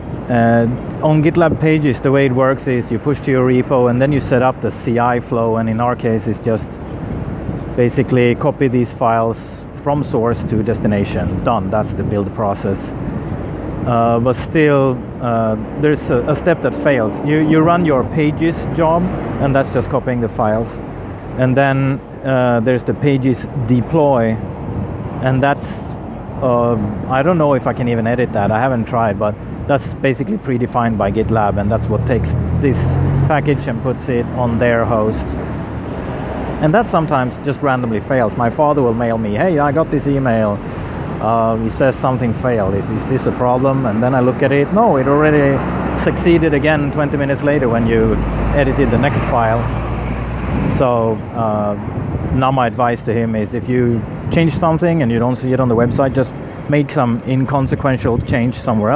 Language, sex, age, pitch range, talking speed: English, male, 30-49, 115-140 Hz, 180 wpm